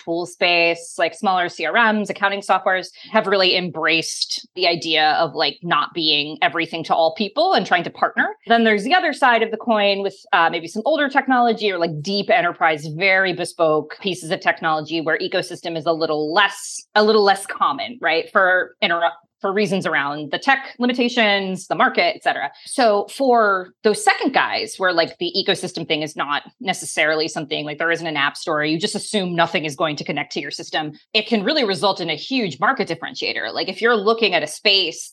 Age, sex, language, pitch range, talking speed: 20-39, female, English, 165-215 Hz, 200 wpm